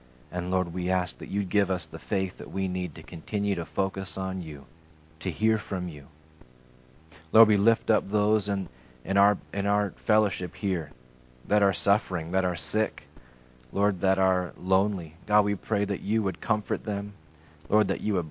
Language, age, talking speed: English, 30-49, 190 wpm